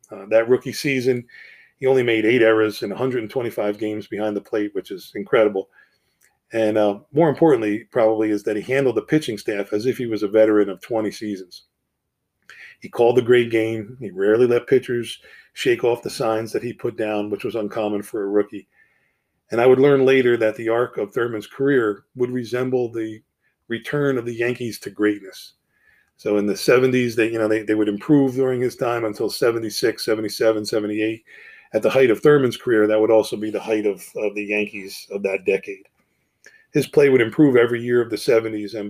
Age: 40-59